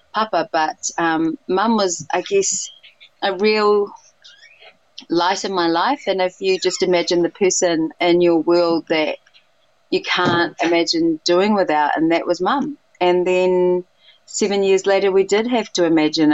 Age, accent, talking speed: 30-49, Australian, 160 wpm